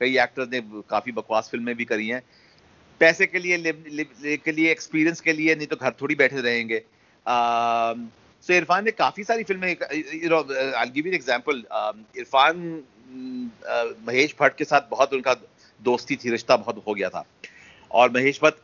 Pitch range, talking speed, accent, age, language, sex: 120-160 Hz, 115 wpm, native, 50-69, Hindi, male